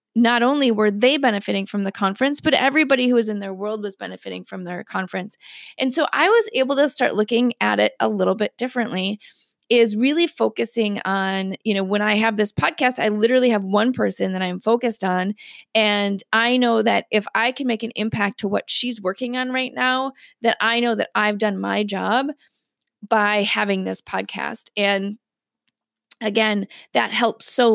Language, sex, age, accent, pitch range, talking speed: English, female, 20-39, American, 200-245 Hz, 190 wpm